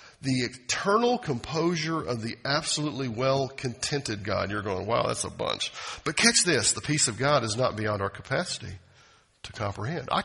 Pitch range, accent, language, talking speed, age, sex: 110-160 Hz, American, English, 180 wpm, 50-69, male